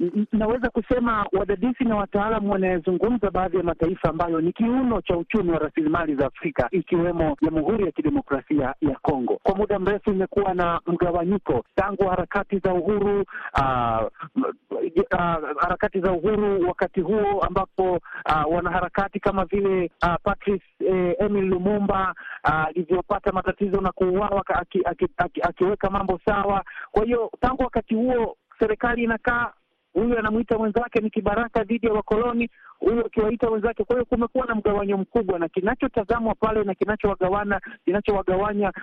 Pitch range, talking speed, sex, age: 180-220 Hz, 145 wpm, male, 50-69